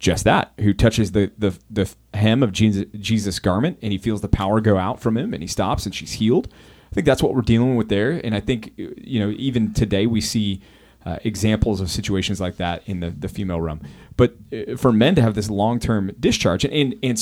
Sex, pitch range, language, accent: male, 95-115 Hz, English, American